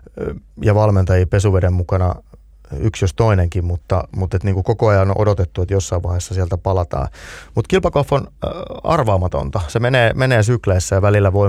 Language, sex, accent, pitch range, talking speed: Finnish, male, native, 90-115 Hz, 160 wpm